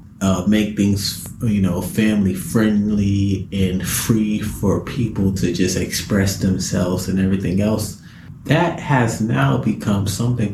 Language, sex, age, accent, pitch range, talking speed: English, male, 30-49, American, 90-120 Hz, 130 wpm